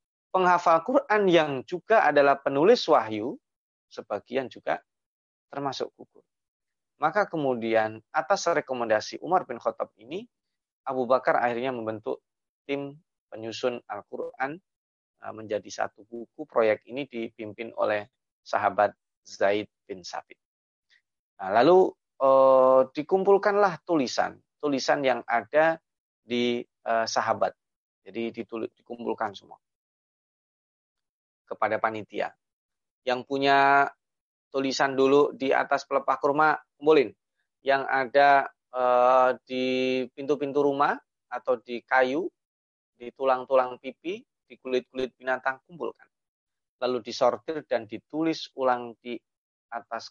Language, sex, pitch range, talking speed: Indonesian, male, 115-145 Hz, 105 wpm